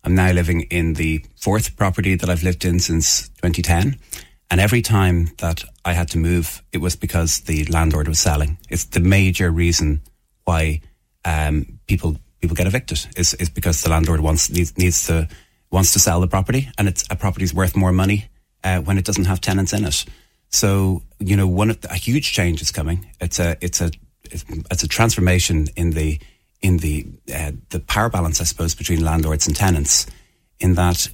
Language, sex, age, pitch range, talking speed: English, male, 30-49, 85-100 Hz, 195 wpm